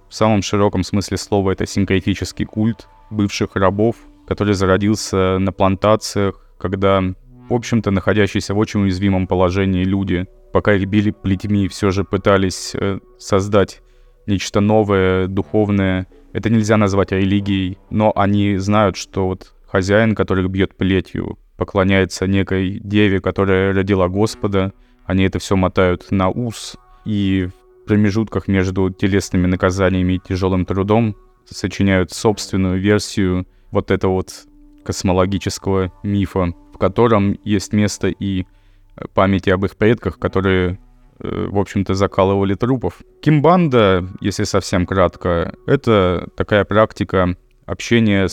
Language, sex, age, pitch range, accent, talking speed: Russian, male, 20-39, 95-105 Hz, native, 125 wpm